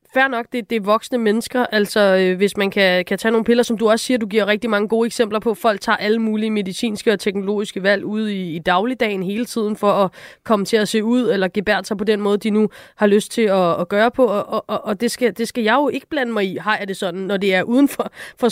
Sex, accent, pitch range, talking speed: female, native, 205-245 Hz, 275 wpm